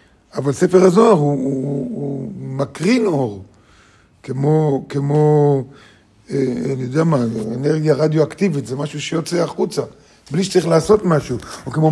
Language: Hebrew